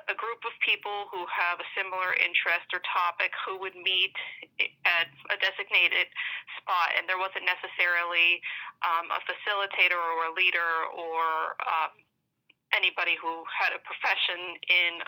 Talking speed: 145 wpm